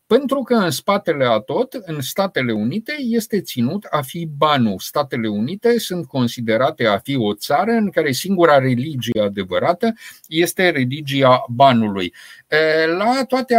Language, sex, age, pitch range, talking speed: Romanian, male, 50-69, 120-170 Hz, 140 wpm